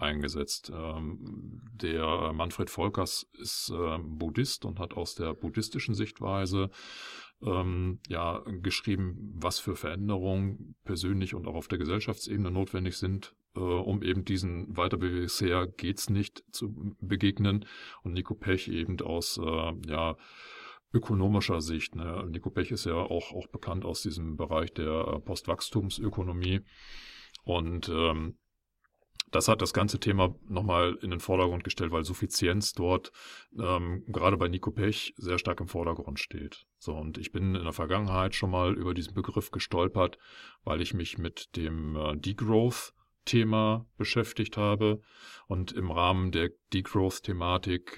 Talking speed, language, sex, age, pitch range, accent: 135 wpm, German, male, 40-59, 85-105 Hz, German